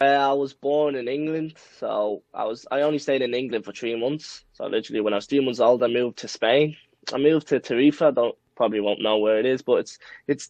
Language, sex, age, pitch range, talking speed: English, male, 20-39, 130-150 Hz, 240 wpm